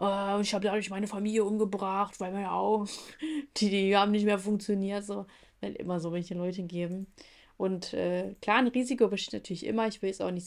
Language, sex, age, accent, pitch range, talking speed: German, female, 20-39, German, 185-220 Hz, 200 wpm